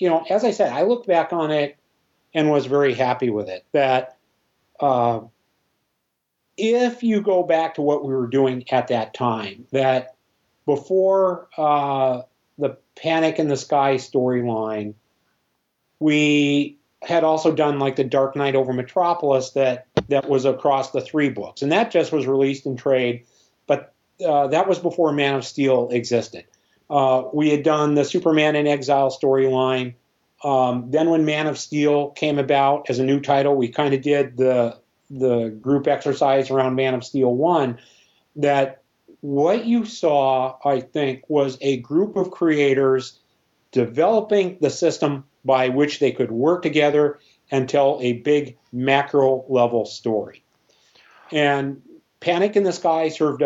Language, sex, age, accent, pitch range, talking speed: English, male, 40-59, American, 130-155 Hz, 155 wpm